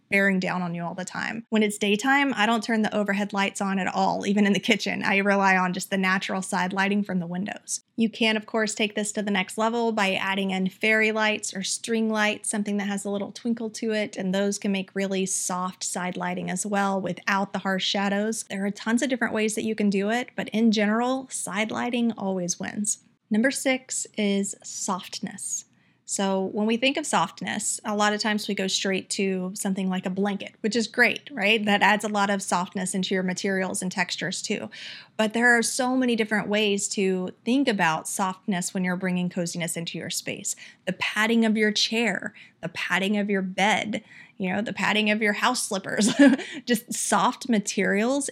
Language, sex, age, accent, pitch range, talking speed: English, female, 30-49, American, 190-220 Hz, 210 wpm